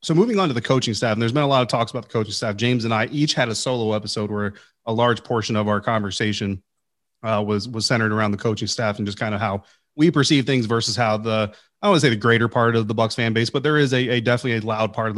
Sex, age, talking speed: male, 30-49, 295 wpm